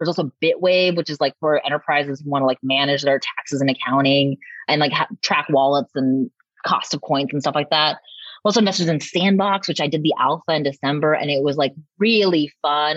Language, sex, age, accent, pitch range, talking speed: English, female, 20-39, American, 155-230 Hz, 215 wpm